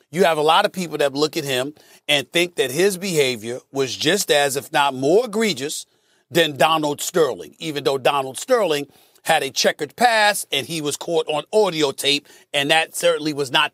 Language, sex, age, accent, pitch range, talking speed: English, male, 40-59, American, 160-210 Hz, 195 wpm